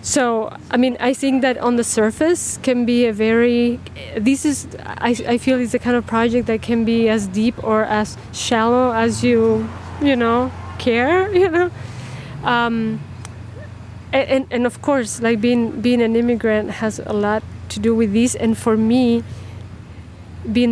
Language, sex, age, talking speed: English, female, 20-39, 170 wpm